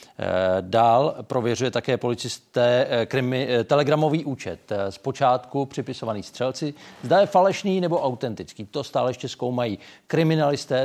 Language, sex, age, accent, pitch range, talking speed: Czech, male, 50-69, native, 105-145 Hz, 115 wpm